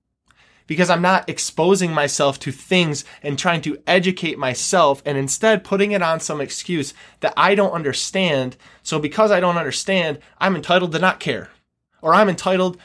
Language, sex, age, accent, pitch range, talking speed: English, male, 20-39, American, 145-190 Hz, 170 wpm